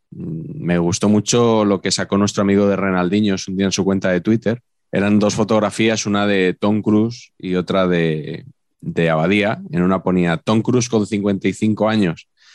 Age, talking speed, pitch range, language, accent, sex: 20-39, 175 wpm, 90-110 Hz, Spanish, Spanish, male